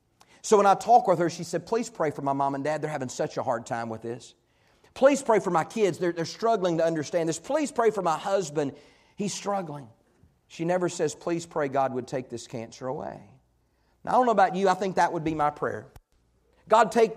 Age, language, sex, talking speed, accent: 40-59, English, male, 235 wpm, American